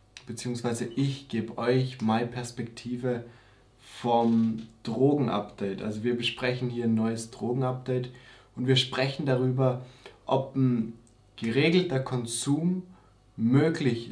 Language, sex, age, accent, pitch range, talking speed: German, male, 20-39, German, 115-130 Hz, 105 wpm